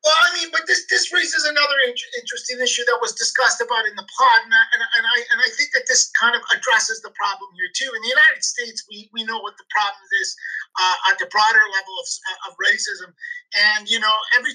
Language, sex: English, male